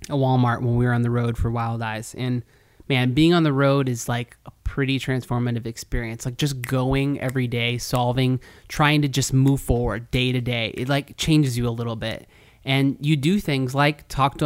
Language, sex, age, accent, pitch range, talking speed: English, male, 20-39, American, 120-140 Hz, 210 wpm